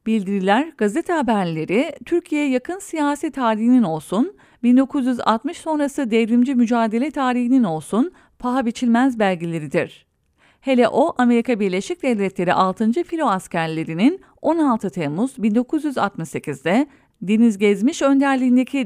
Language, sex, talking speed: English, female, 100 wpm